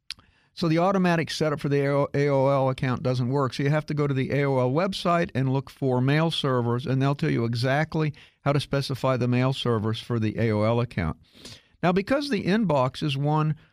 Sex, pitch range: male, 125-165 Hz